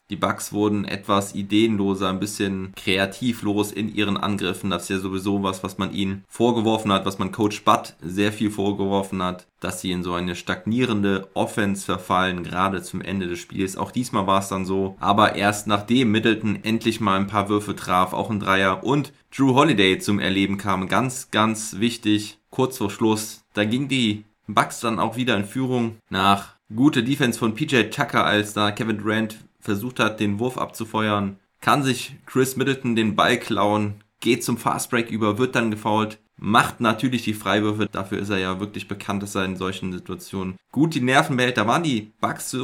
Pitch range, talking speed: 95-115 Hz, 190 wpm